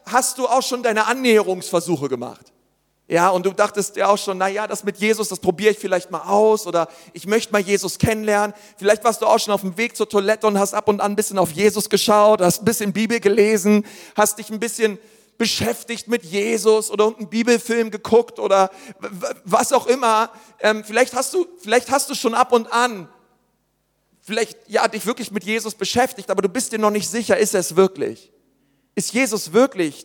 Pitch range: 200-230 Hz